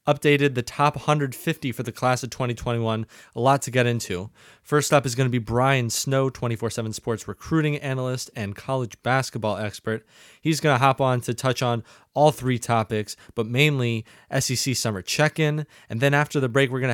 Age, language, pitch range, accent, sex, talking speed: 20-39, English, 115-135 Hz, American, male, 190 wpm